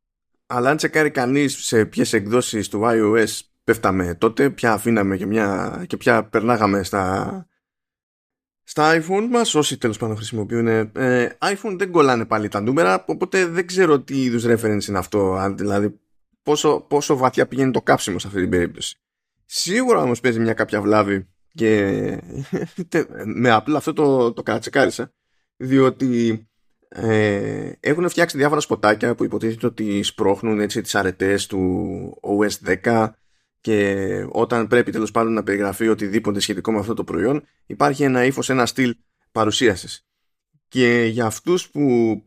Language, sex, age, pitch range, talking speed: Greek, male, 20-39, 105-130 Hz, 145 wpm